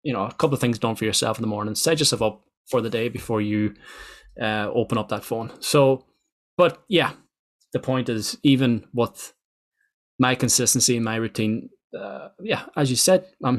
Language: English